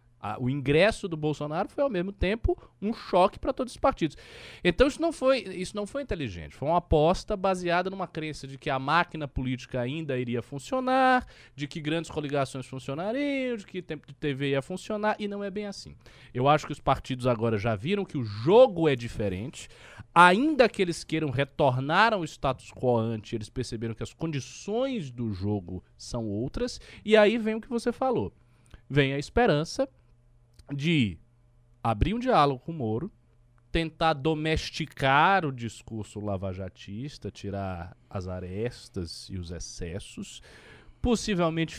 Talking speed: 160 wpm